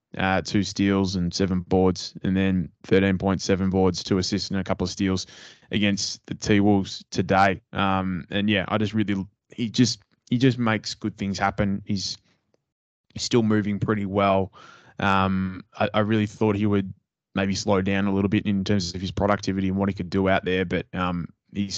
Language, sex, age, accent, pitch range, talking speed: English, male, 20-39, Australian, 95-100 Hz, 195 wpm